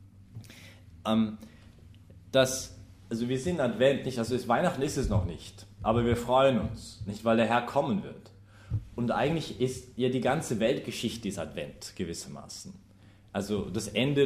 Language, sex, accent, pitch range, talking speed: English, male, German, 100-120 Hz, 155 wpm